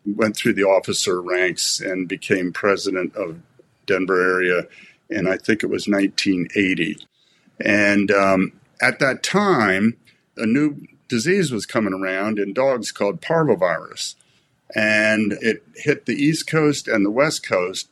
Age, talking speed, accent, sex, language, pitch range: 50-69, 140 wpm, American, male, English, 100-130 Hz